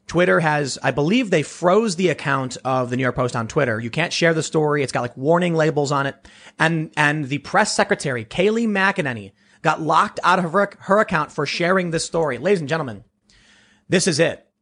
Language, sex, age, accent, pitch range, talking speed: English, male, 30-49, American, 130-175 Hz, 210 wpm